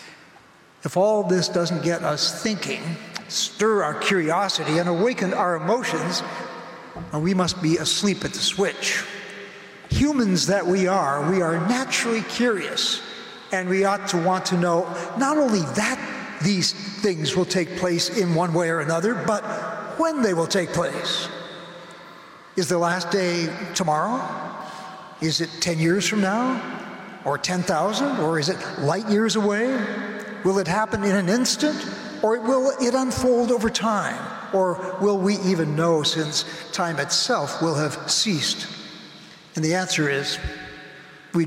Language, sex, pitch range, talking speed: English, male, 165-210 Hz, 150 wpm